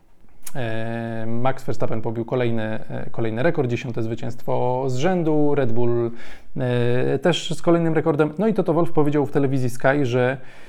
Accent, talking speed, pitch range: native, 145 wpm, 125-155 Hz